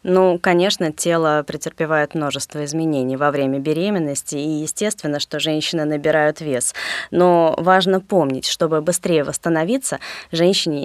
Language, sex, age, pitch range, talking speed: Russian, female, 20-39, 155-205 Hz, 120 wpm